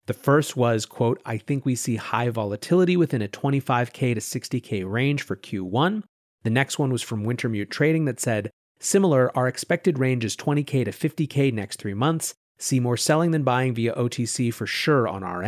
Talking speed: 190 wpm